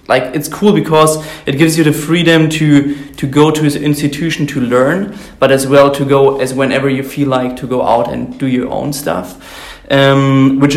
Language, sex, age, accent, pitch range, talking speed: English, male, 30-49, German, 140-160 Hz, 205 wpm